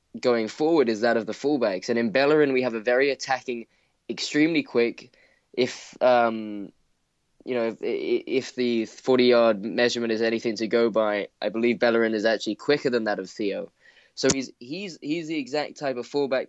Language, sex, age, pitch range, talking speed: English, male, 10-29, 115-130 Hz, 180 wpm